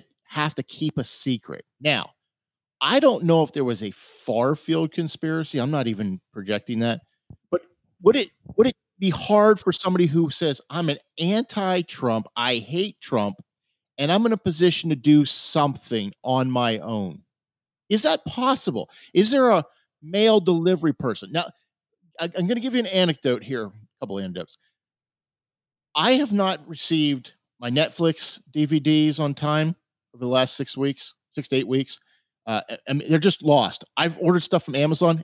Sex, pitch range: male, 135-195 Hz